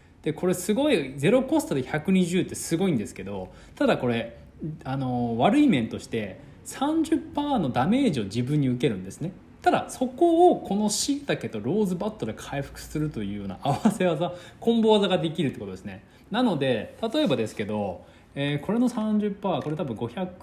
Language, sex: Japanese, male